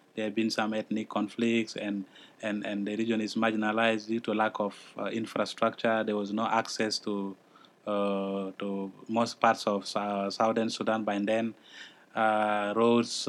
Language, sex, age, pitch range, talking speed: English, male, 20-39, 105-120 Hz, 165 wpm